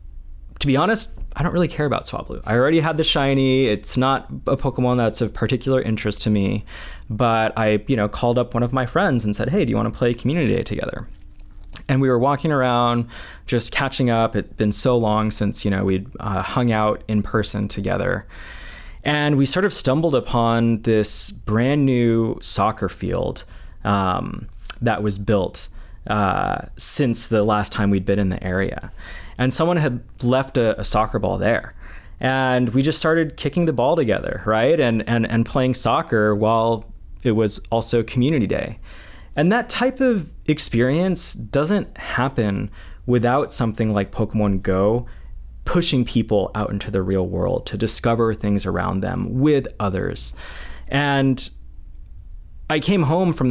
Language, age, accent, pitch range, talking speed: English, 20-39, American, 100-130 Hz, 170 wpm